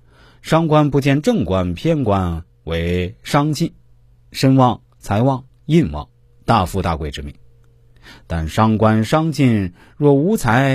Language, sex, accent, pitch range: Chinese, male, native, 95-125 Hz